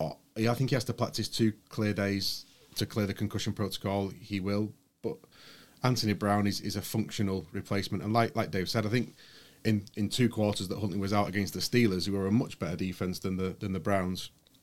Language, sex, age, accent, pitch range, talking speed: English, male, 30-49, British, 95-110 Hz, 220 wpm